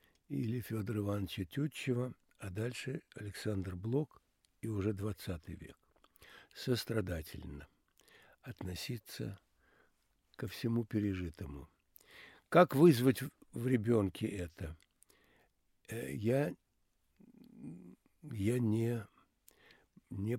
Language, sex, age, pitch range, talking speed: Russian, male, 60-79, 95-125 Hz, 75 wpm